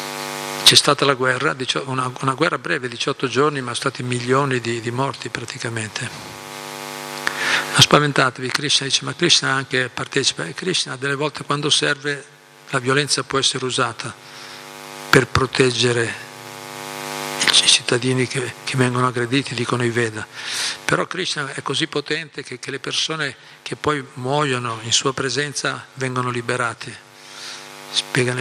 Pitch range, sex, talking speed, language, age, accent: 125-145 Hz, male, 135 wpm, Italian, 50-69, native